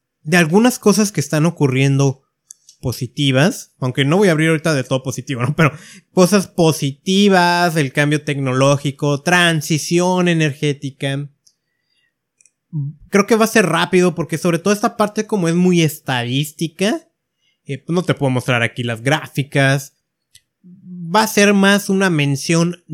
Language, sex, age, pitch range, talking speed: Spanish, male, 30-49, 140-180 Hz, 140 wpm